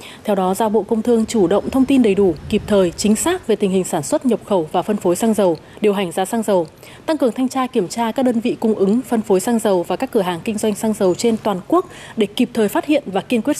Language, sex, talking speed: Vietnamese, female, 295 wpm